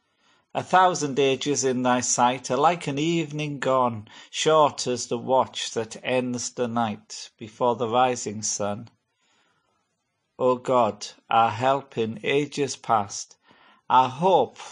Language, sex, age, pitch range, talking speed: English, male, 40-59, 115-135 Hz, 130 wpm